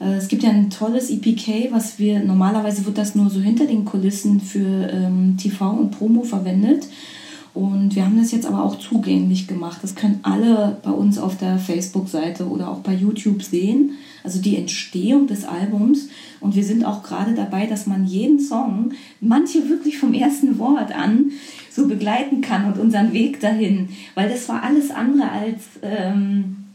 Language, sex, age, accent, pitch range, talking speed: German, female, 20-39, German, 190-240 Hz, 175 wpm